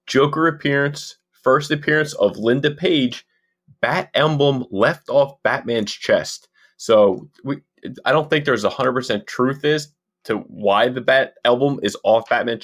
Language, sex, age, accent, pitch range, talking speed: English, male, 20-39, American, 105-145 Hz, 150 wpm